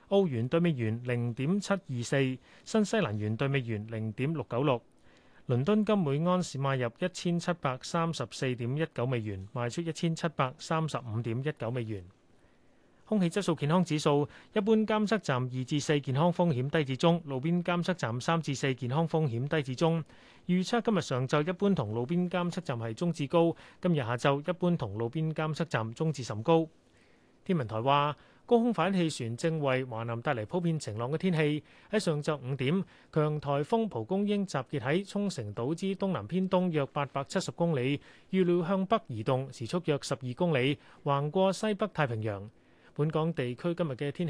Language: Chinese